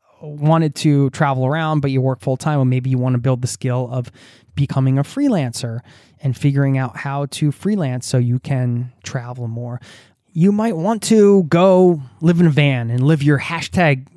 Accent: American